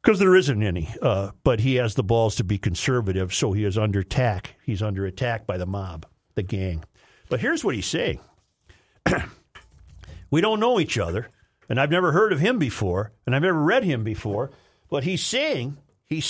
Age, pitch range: 50-69, 115-185 Hz